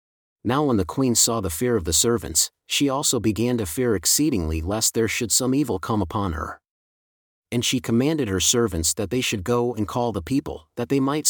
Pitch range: 100-125 Hz